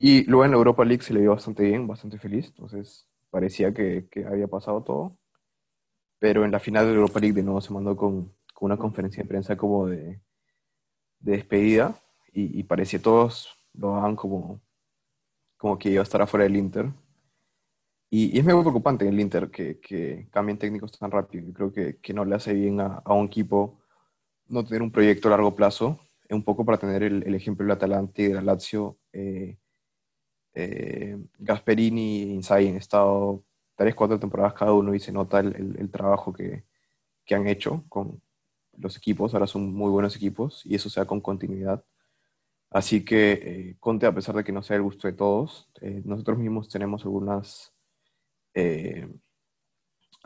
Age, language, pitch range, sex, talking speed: 20-39, Spanish, 100-110 Hz, male, 190 wpm